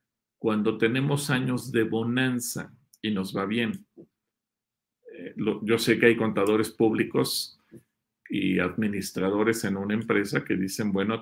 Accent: Mexican